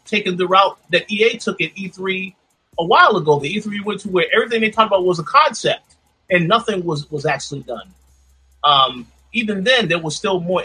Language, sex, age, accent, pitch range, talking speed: English, male, 30-49, American, 135-175 Hz, 205 wpm